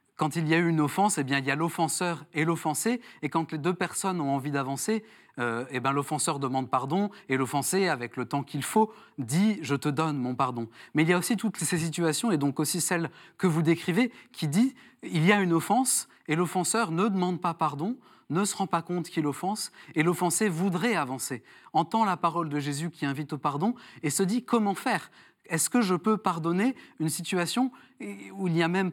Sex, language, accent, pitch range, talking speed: male, French, French, 150-205 Hz, 230 wpm